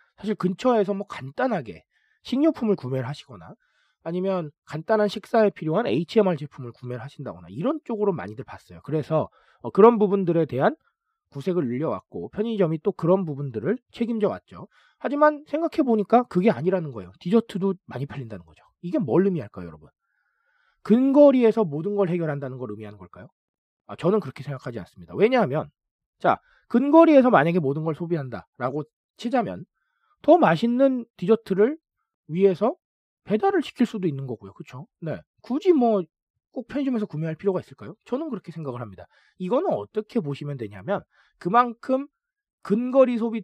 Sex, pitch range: male, 150-245 Hz